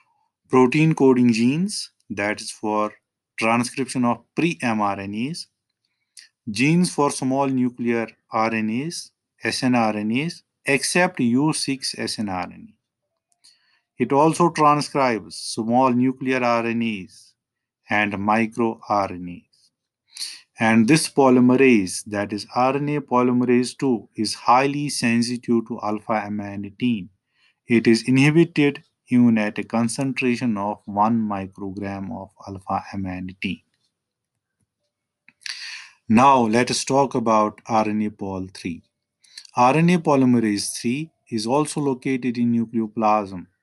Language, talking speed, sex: English, 90 wpm, male